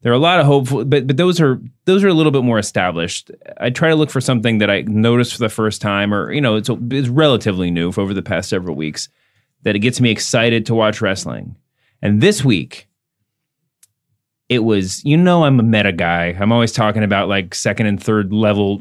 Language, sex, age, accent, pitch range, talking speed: English, male, 30-49, American, 110-135 Hz, 230 wpm